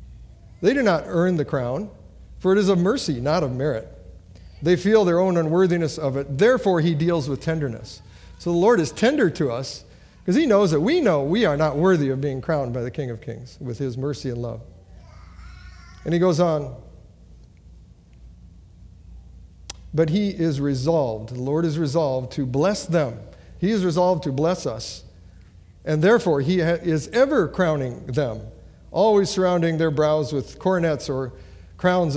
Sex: male